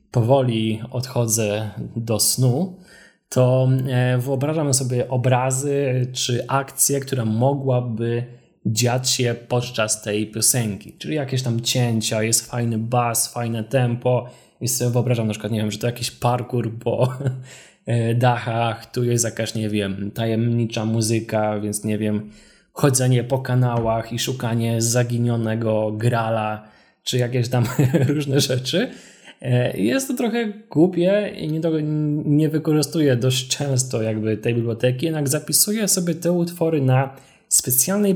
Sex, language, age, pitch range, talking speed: male, Polish, 20-39, 115-145 Hz, 125 wpm